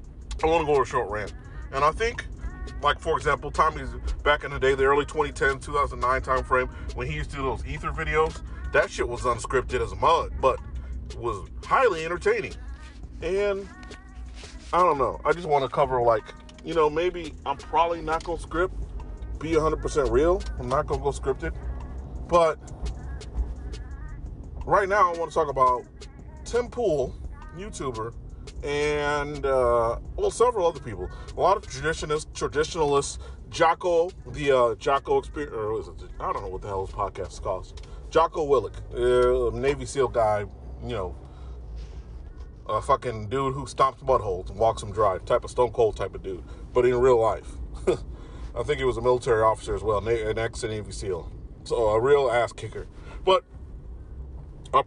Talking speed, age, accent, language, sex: 170 wpm, 30-49, American, English, male